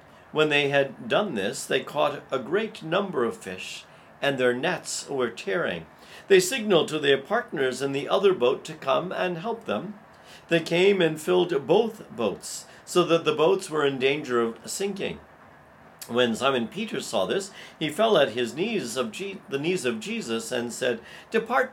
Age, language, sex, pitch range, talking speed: 50-69, English, male, 140-215 Hz, 170 wpm